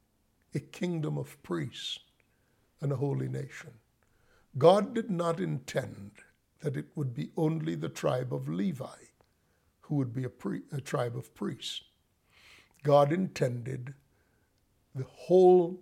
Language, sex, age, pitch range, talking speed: English, male, 60-79, 120-160 Hz, 130 wpm